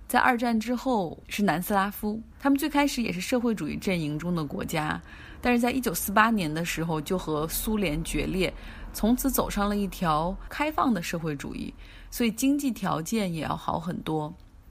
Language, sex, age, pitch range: Chinese, female, 20-39, 180-245 Hz